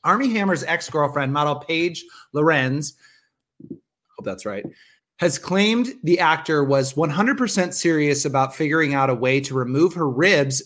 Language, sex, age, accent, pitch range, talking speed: English, male, 30-49, American, 135-175 Hz, 145 wpm